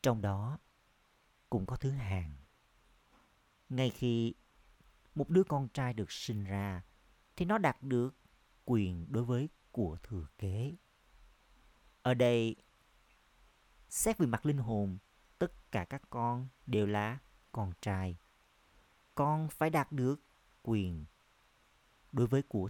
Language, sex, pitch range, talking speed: Vietnamese, male, 100-130 Hz, 125 wpm